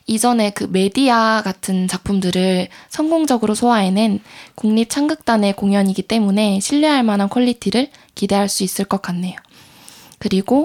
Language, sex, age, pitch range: Korean, female, 20-39, 195-245 Hz